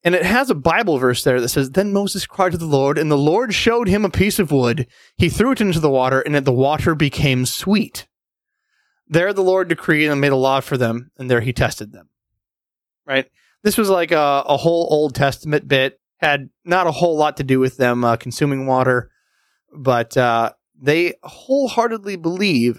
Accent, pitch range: American, 125-155 Hz